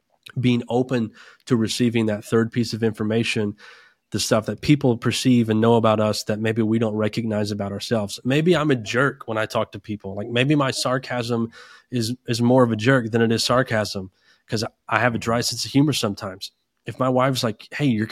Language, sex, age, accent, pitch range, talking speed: English, male, 20-39, American, 110-125 Hz, 210 wpm